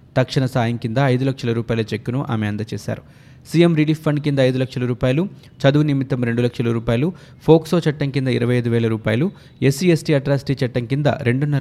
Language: Telugu